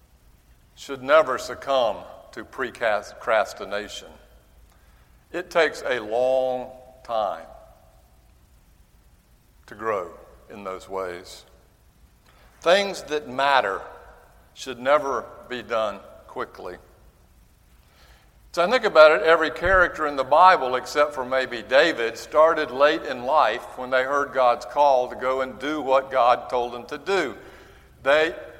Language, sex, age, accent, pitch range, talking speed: English, male, 60-79, American, 110-155 Hz, 120 wpm